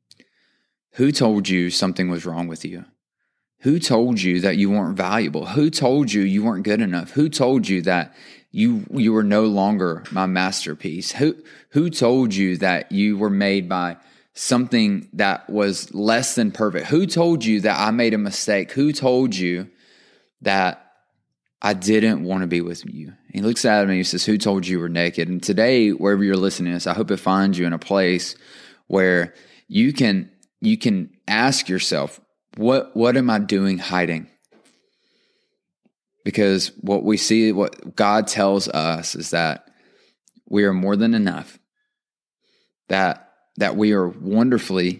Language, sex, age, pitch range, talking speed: English, male, 20-39, 90-115 Hz, 170 wpm